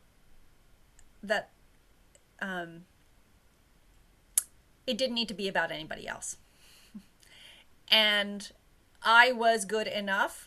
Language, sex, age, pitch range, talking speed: English, female, 30-49, 185-230 Hz, 85 wpm